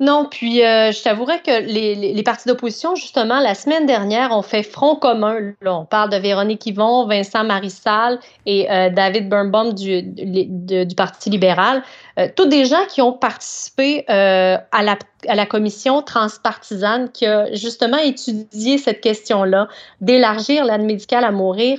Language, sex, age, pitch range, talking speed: French, female, 30-49, 195-245 Hz, 160 wpm